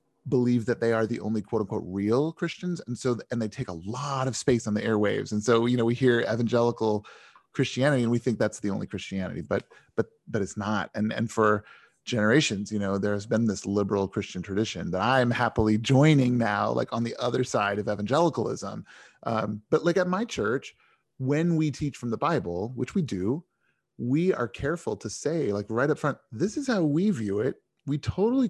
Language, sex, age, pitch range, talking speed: English, male, 30-49, 105-140 Hz, 210 wpm